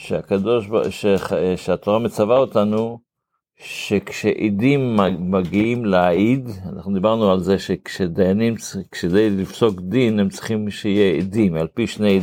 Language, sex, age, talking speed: Hebrew, male, 50-69, 110 wpm